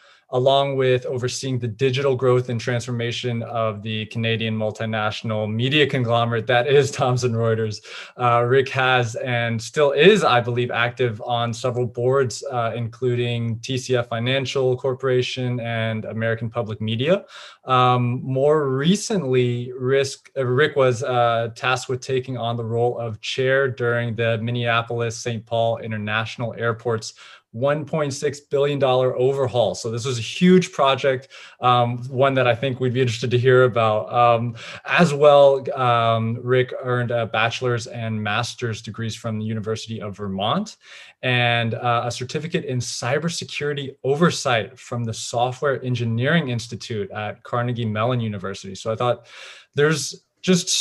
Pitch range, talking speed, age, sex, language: 115-130 Hz, 135 wpm, 20-39, male, English